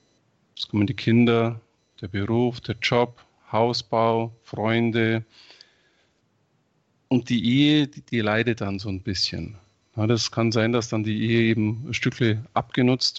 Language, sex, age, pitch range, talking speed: German, male, 40-59, 110-120 Hz, 145 wpm